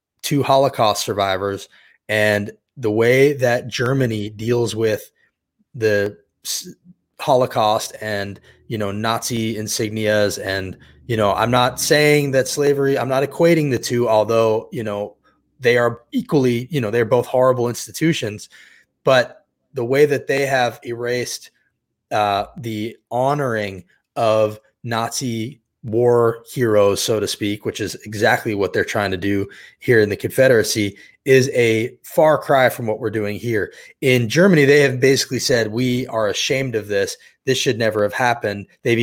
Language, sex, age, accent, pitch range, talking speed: English, male, 20-39, American, 110-135 Hz, 150 wpm